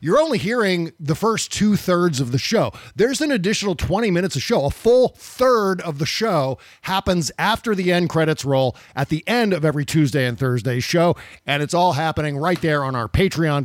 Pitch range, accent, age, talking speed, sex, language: 130-175 Hz, American, 50-69, 200 wpm, male, English